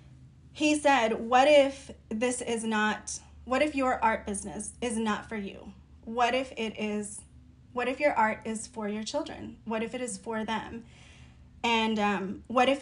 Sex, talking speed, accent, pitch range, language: female, 180 wpm, American, 215-245 Hz, English